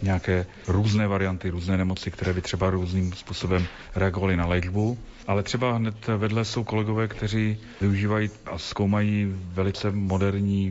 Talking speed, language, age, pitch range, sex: 140 wpm, Slovak, 40-59, 90-100 Hz, male